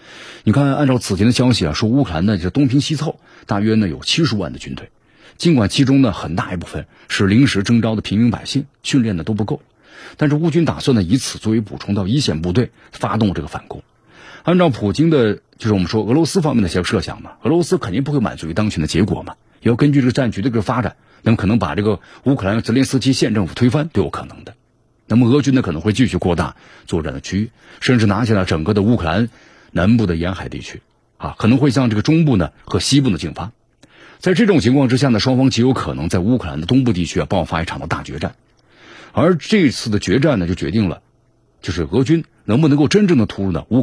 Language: Chinese